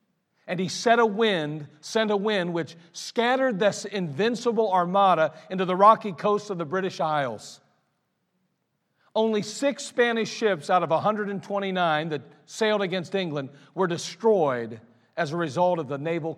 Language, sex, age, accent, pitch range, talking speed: English, male, 50-69, American, 150-200 Hz, 145 wpm